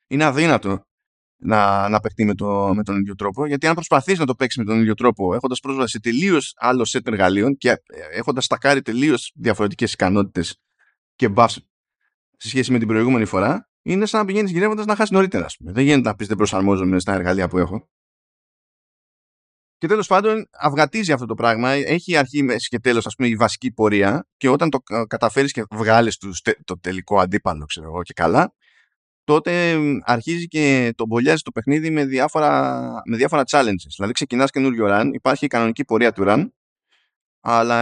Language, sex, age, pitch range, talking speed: Greek, male, 20-39, 105-145 Hz, 175 wpm